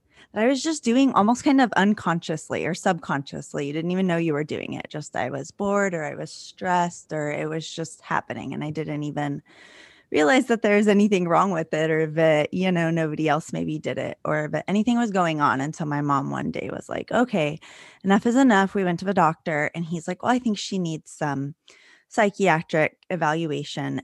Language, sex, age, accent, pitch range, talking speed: English, female, 20-39, American, 155-205 Hz, 210 wpm